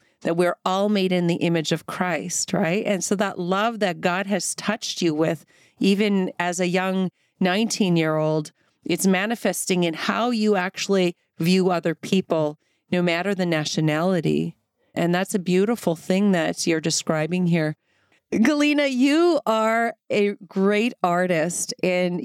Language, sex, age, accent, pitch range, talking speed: English, female, 40-59, American, 175-220 Hz, 145 wpm